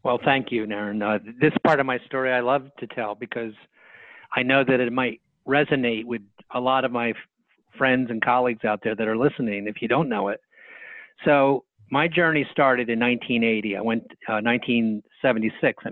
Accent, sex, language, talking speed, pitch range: American, male, English, 190 wpm, 110-135 Hz